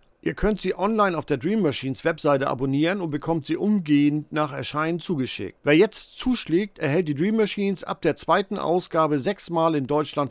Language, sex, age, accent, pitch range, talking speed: German, male, 50-69, German, 145-190 Hz, 180 wpm